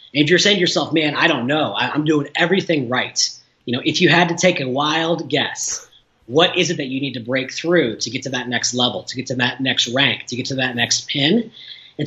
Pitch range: 130-175 Hz